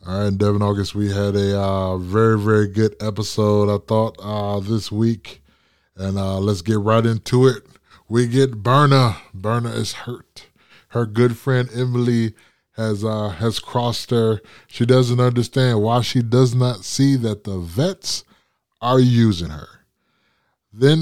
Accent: American